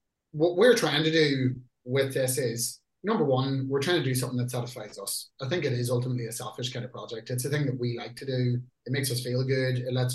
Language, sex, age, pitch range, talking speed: English, male, 30-49, 125-145 Hz, 255 wpm